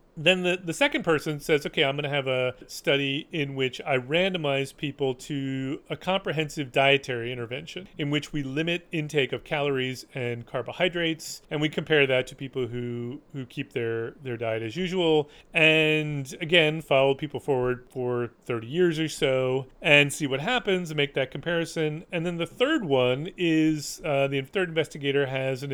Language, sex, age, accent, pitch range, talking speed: English, male, 30-49, American, 130-165 Hz, 175 wpm